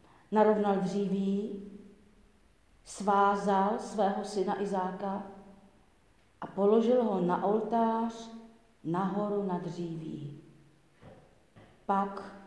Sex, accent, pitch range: female, native, 190-230 Hz